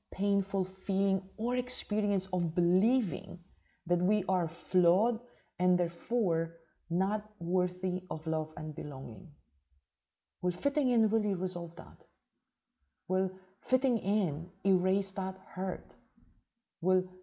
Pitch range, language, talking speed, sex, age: 180-225 Hz, English, 110 wpm, female, 30-49